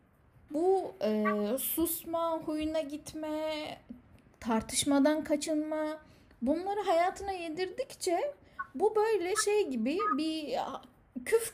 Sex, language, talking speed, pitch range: female, Turkish, 85 wpm, 255-345 Hz